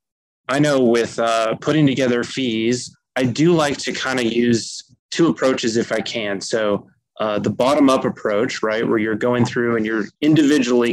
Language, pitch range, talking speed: English, 110-135 Hz, 175 wpm